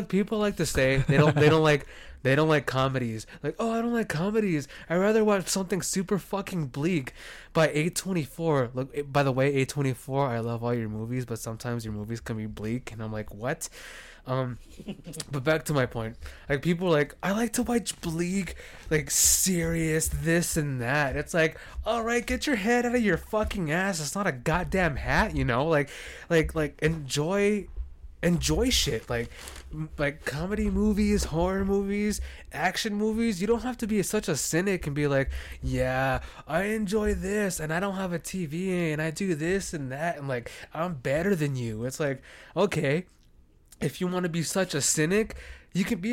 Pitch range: 130-190 Hz